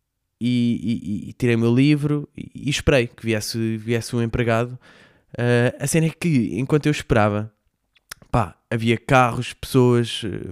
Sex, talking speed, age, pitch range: male, 155 wpm, 20-39, 110-130 Hz